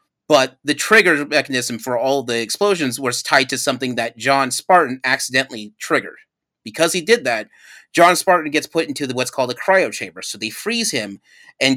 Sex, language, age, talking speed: male, English, 30-49, 190 wpm